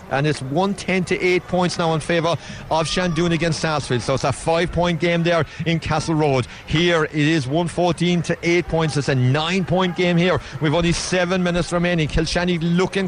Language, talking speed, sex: English, 195 wpm, male